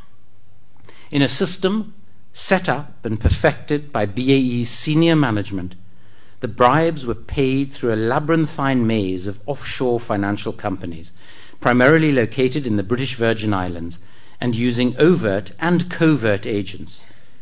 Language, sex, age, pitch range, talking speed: English, male, 60-79, 100-130 Hz, 125 wpm